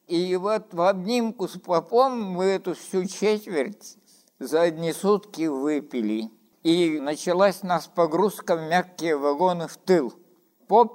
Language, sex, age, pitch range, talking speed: Russian, male, 60-79, 165-215 Hz, 135 wpm